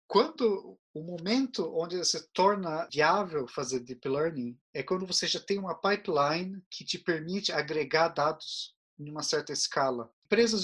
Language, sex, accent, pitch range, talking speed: Portuguese, male, Brazilian, 150-190 Hz, 150 wpm